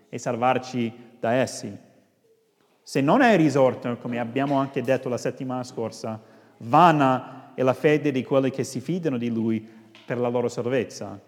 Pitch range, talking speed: 115-150 Hz, 160 wpm